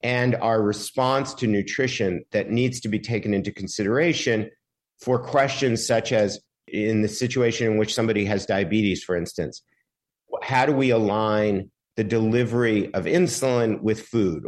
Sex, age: male, 50-69